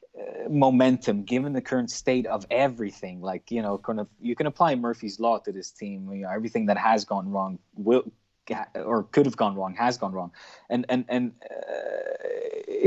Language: English